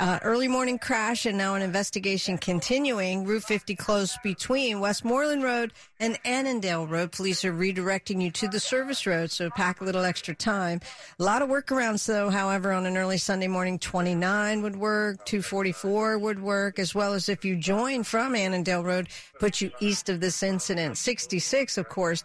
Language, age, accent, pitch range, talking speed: English, 50-69, American, 185-215 Hz, 180 wpm